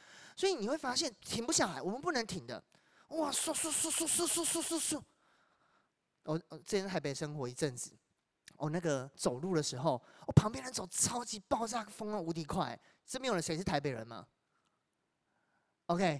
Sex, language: male, Chinese